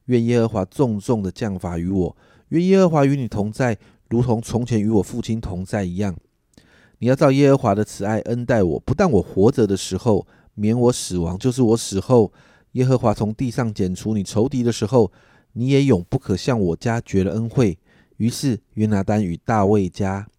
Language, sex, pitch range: Chinese, male, 95-120 Hz